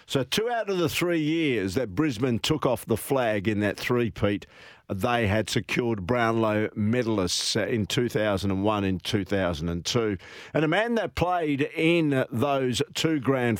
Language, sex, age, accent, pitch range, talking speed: English, male, 50-69, Australian, 115-145 Hz, 150 wpm